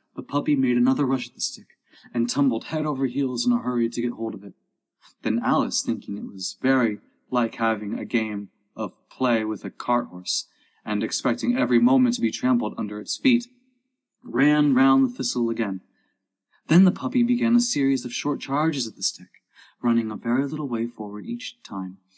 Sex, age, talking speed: male, 30-49, 195 wpm